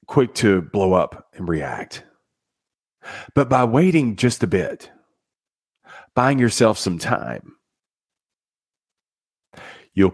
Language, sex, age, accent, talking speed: English, male, 40-59, American, 100 wpm